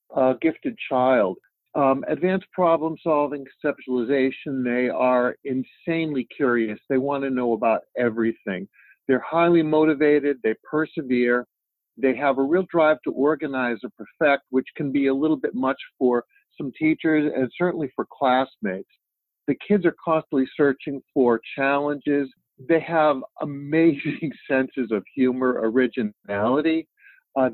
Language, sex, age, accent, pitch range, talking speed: English, male, 50-69, American, 130-160 Hz, 130 wpm